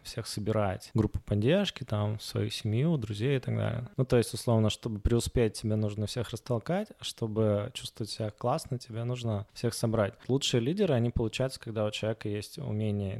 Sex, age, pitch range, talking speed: male, 20-39, 105-125 Hz, 175 wpm